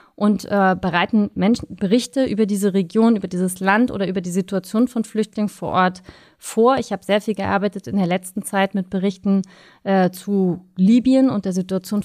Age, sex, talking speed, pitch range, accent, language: 30-49, female, 180 wpm, 190-225 Hz, German, German